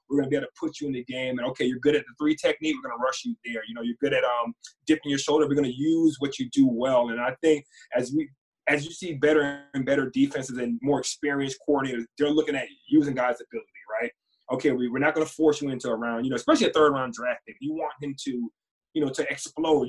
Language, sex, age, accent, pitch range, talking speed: English, male, 20-39, American, 125-150 Hz, 275 wpm